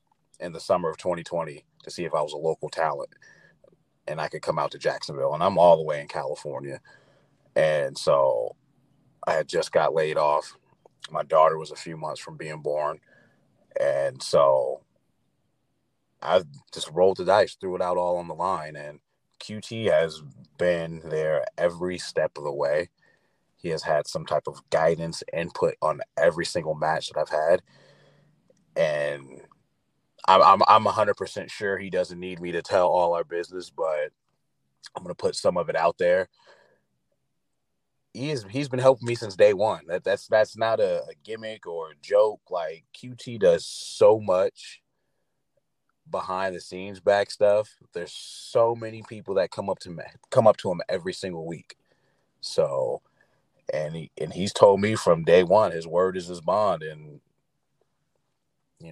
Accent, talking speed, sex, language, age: American, 175 wpm, male, English, 30-49